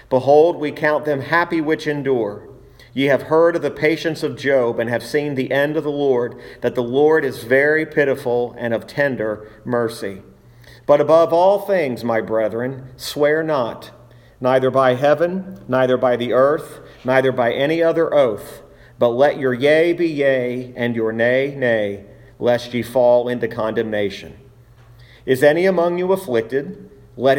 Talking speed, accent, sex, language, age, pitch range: 160 wpm, American, male, English, 40-59, 120-150 Hz